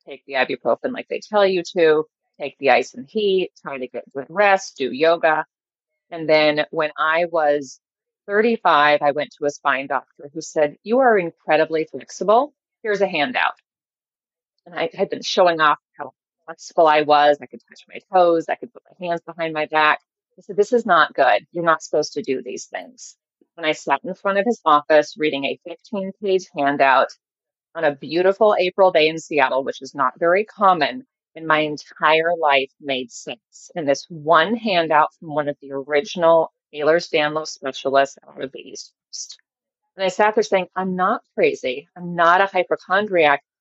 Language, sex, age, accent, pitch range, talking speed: English, female, 30-49, American, 150-200 Hz, 185 wpm